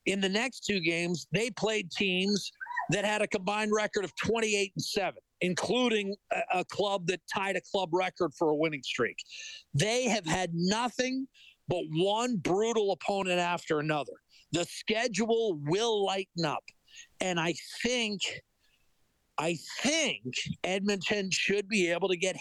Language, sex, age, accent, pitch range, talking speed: English, male, 50-69, American, 170-220 Hz, 150 wpm